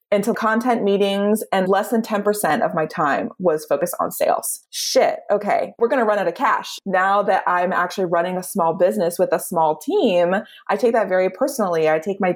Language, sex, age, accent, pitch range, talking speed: English, female, 20-39, American, 160-210 Hz, 210 wpm